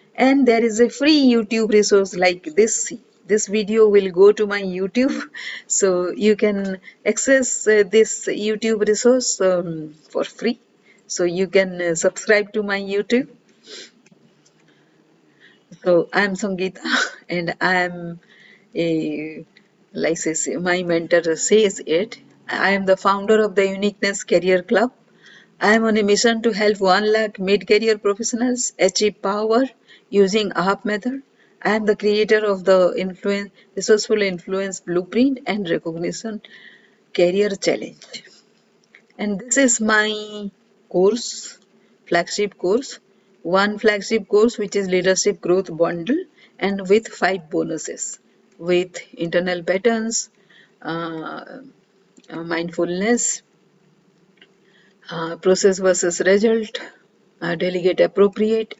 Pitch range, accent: 185-220 Hz, Indian